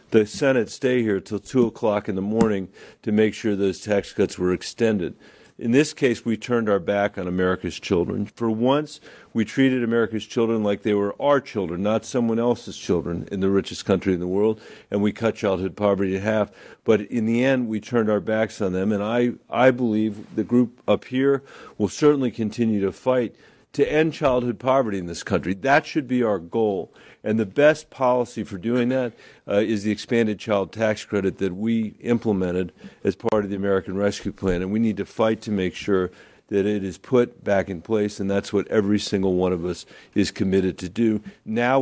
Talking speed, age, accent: 205 wpm, 50-69, American